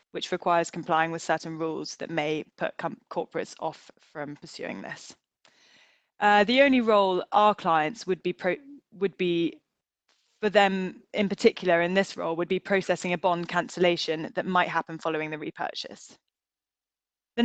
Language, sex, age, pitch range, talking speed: English, female, 10-29, 170-200 Hz, 160 wpm